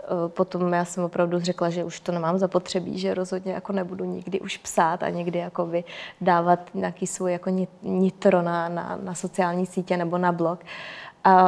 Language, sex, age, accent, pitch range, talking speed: Czech, female, 20-39, native, 180-195 Hz, 175 wpm